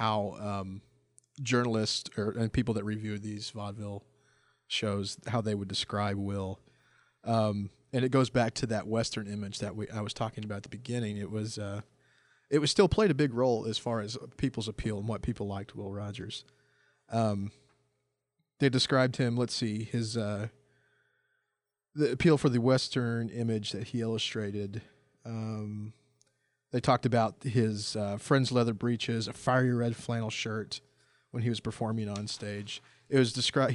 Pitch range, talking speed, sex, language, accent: 105-125 Hz, 170 wpm, male, English, American